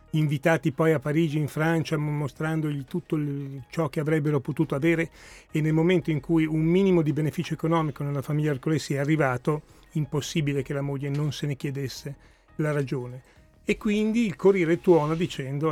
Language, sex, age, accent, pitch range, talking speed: Italian, male, 40-59, native, 140-165 Hz, 170 wpm